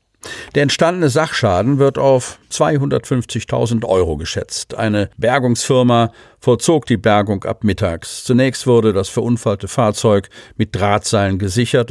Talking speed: 115 wpm